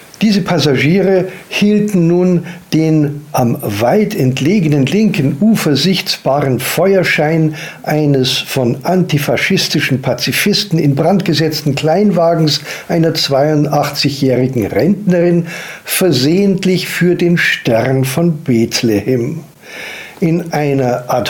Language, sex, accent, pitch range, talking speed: German, male, German, 135-180 Hz, 90 wpm